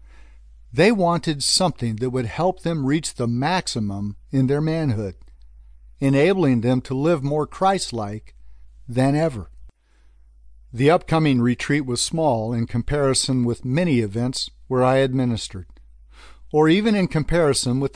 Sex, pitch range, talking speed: male, 90-150 Hz, 130 wpm